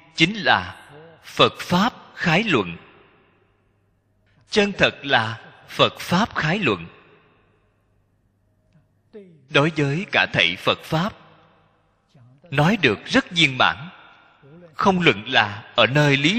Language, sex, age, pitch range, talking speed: Vietnamese, male, 20-39, 100-155 Hz, 110 wpm